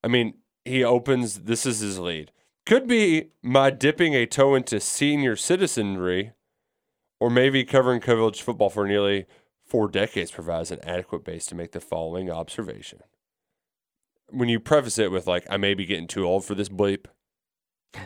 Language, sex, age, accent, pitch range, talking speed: English, male, 30-49, American, 95-135 Hz, 165 wpm